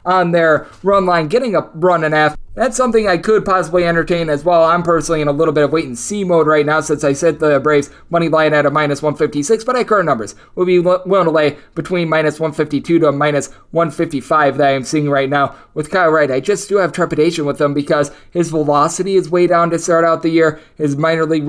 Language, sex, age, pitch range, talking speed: English, male, 20-39, 150-175 Hz, 235 wpm